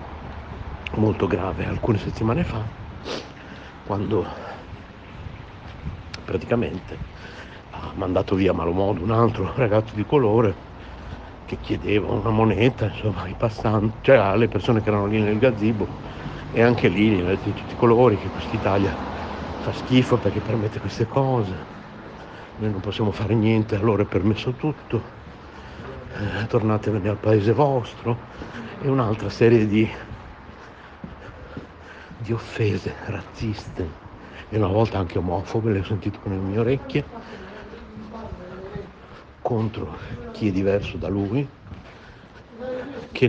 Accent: native